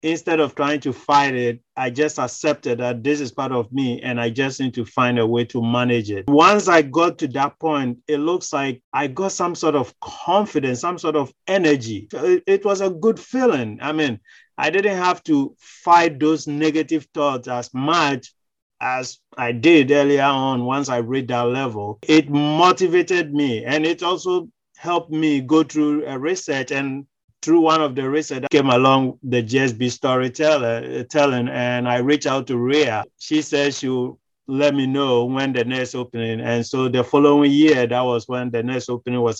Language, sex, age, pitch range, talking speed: English, male, 30-49, 125-155 Hz, 190 wpm